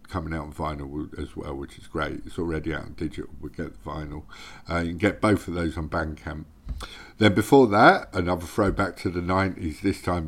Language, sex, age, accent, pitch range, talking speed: English, male, 50-69, British, 80-95 Hz, 220 wpm